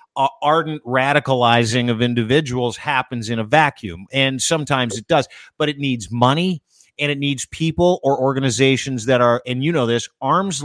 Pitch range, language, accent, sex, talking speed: 125-155 Hz, English, American, male, 170 wpm